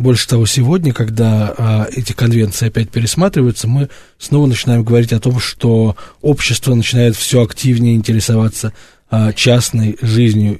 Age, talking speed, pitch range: 20-39, 135 wpm, 110-130 Hz